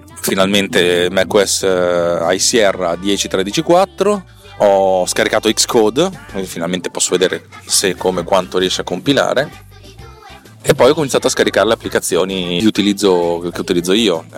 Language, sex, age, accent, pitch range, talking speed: Italian, male, 30-49, native, 90-110 Hz, 130 wpm